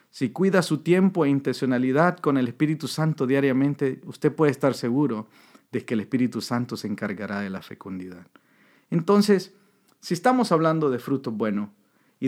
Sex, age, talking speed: male, 50-69, 160 wpm